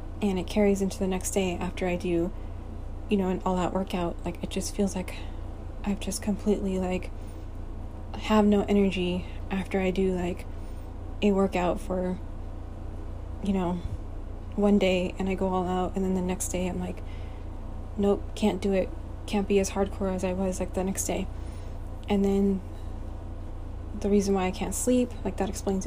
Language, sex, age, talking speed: English, female, 20-39, 175 wpm